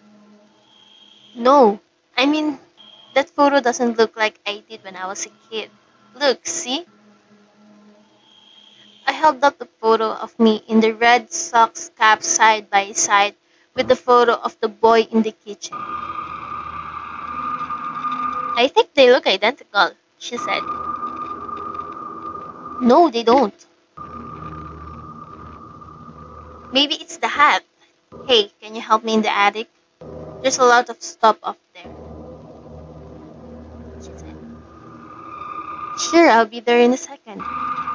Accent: native